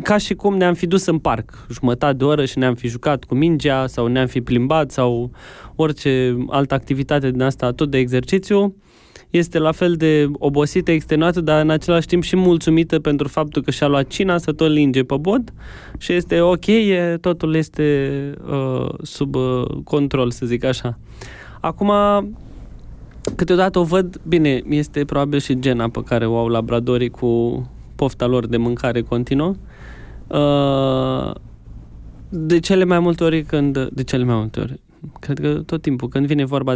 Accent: native